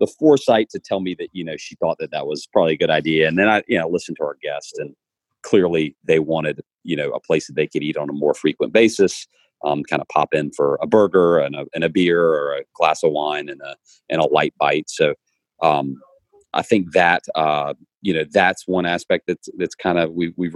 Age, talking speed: 40-59, 245 wpm